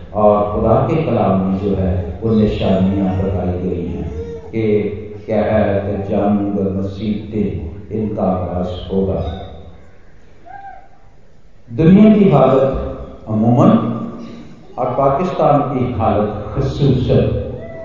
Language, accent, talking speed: Hindi, native, 100 wpm